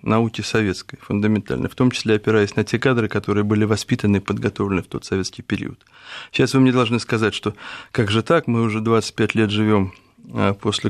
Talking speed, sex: 185 wpm, male